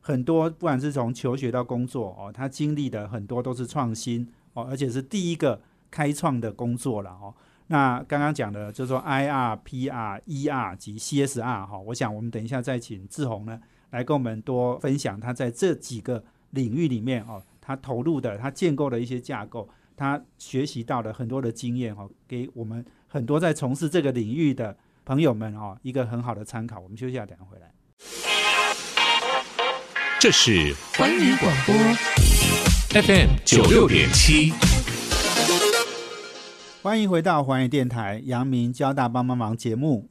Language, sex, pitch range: Chinese, male, 115-140 Hz